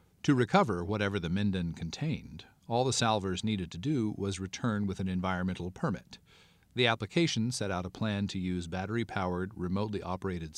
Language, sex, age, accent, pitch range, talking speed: English, male, 40-59, American, 95-125 Hz, 165 wpm